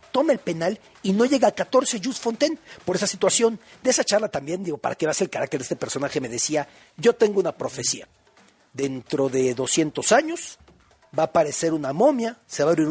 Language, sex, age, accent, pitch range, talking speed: Spanish, male, 50-69, Mexican, 155-220 Hz, 220 wpm